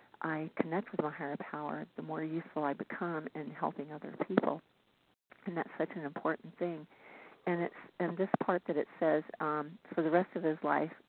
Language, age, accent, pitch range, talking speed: English, 50-69, American, 150-180 Hz, 195 wpm